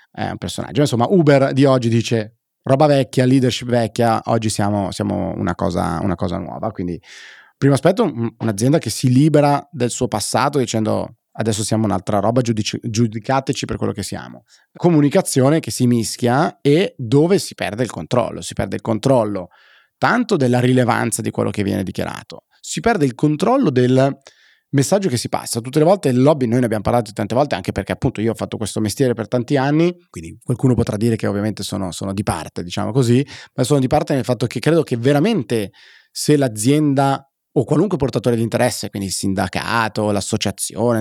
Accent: native